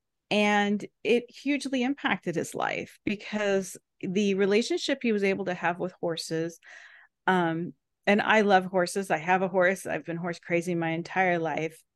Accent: American